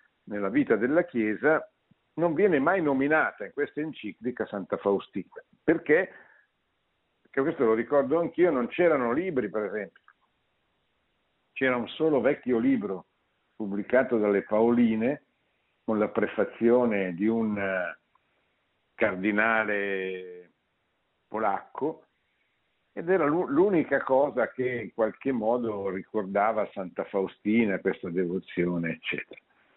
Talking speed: 105 wpm